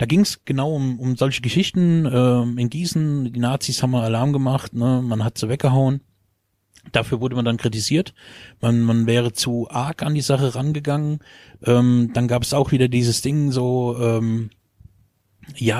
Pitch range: 115-135 Hz